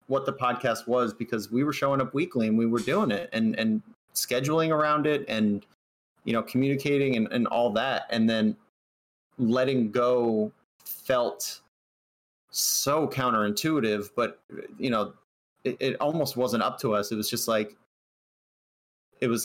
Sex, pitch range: male, 110-135 Hz